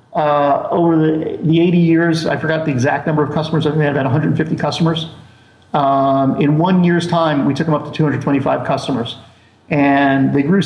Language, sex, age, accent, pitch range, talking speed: English, male, 50-69, American, 140-160 Hz, 195 wpm